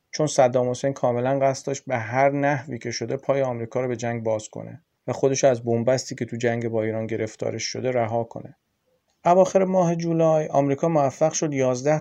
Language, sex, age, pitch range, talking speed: Persian, male, 40-59, 115-140 Hz, 185 wpm